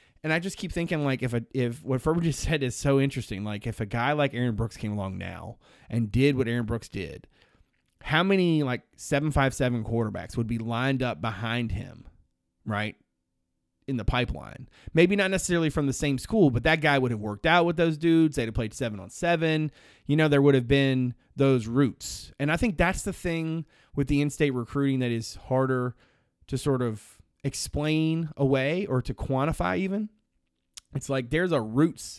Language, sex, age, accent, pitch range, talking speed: English, male, 30-49, American, 115-155 Hz, 200 wpm